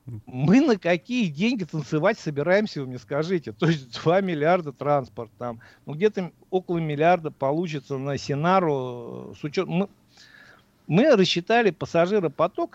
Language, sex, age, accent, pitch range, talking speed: Russian, male, 50-69, native, 130-185 Hz, 130 wpm